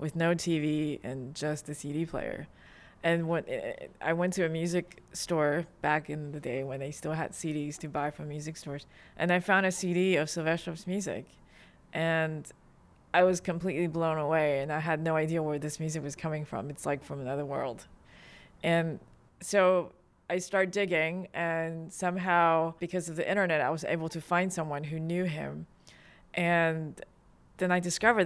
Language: English